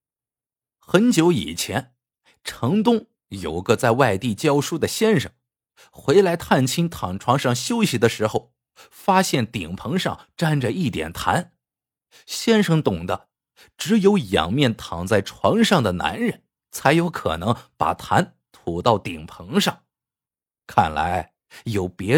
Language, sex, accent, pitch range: Chinese, male, native, 120-190 Hz